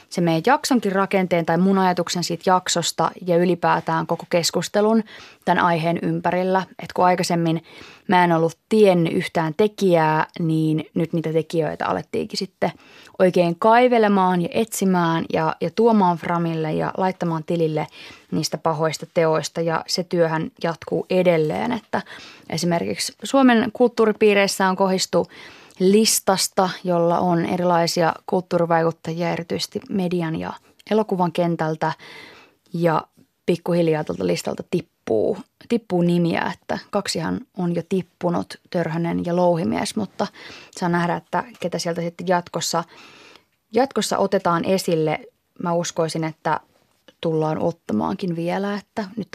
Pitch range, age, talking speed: 165-195 Hz, 20-39, 120 wpm